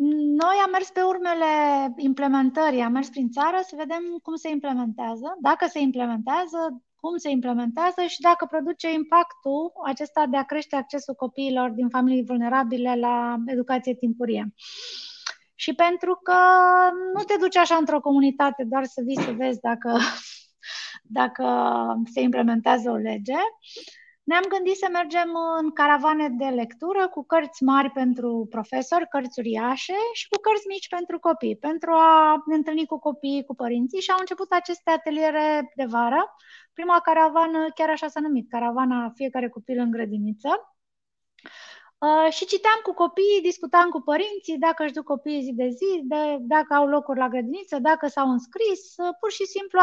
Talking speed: 155 wpm